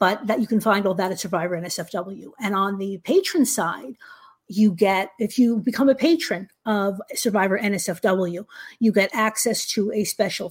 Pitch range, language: 195-245 Hz, English